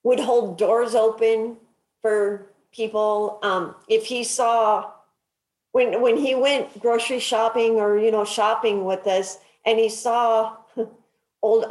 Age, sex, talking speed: 40-59, female, 135 wpm